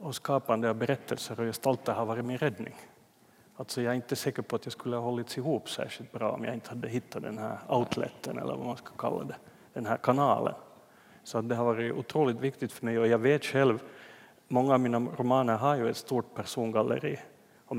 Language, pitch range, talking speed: Swedish, 115-130 Hz, 215 wpm